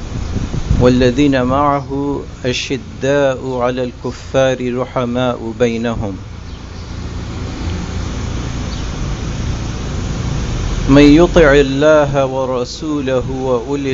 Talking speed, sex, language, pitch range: 50 wpm, male, English, 120-140 Hz